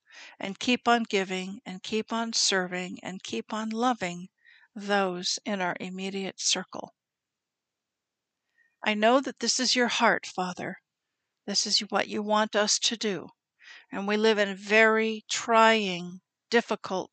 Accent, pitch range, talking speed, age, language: American, 195-230 Hz, 140 wpm, 50-69, English